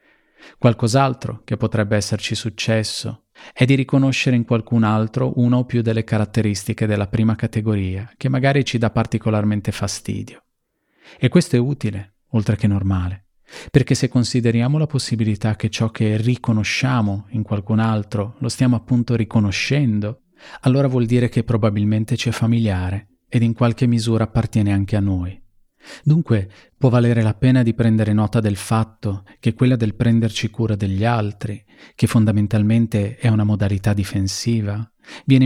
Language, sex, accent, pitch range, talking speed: Italian, male, native, 105-120 Hz, 150 wpm